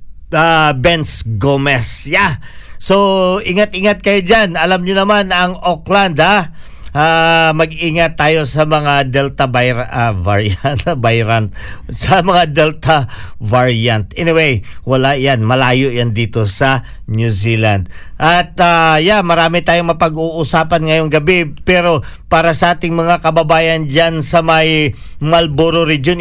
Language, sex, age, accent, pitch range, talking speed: Filipino, male, 50-69, native, 125-175 Hz, 130 wpm